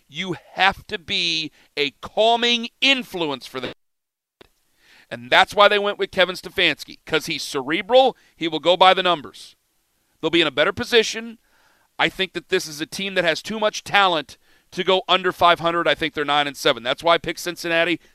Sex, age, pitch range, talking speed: male, 40-59, 145-195 Hz, 195 wpm